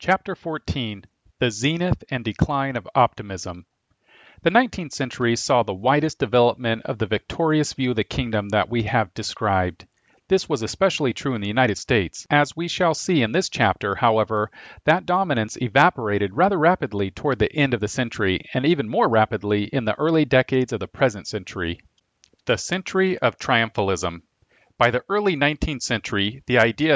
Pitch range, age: 110-145 Hz, 40-59